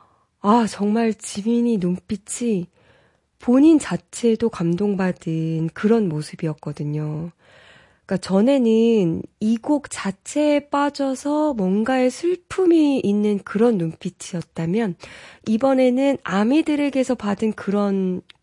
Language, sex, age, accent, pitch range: Korean, female, 20-39, native, 185-255 Hz